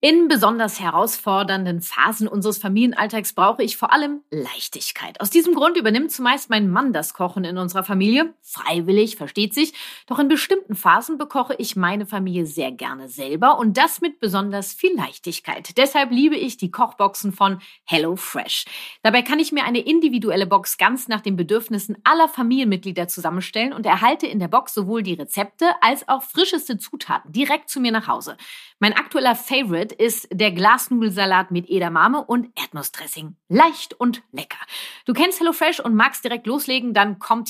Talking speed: 165 wpm